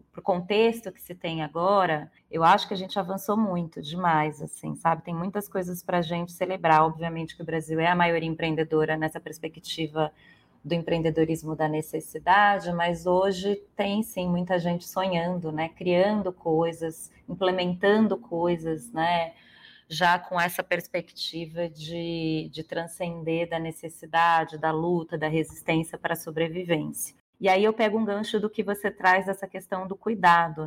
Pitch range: 165-190 Hz